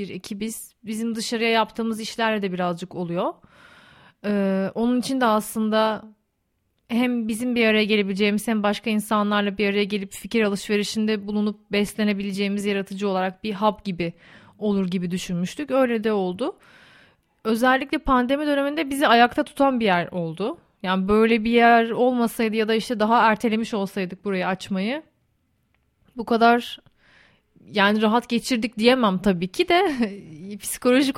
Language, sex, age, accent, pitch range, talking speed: Turkish, female, 30-49, native, 195-230 Hz, 140 wpm